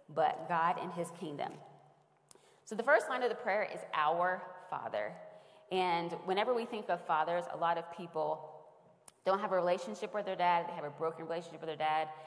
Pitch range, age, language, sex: 160-195 Hz, 20-39, English, female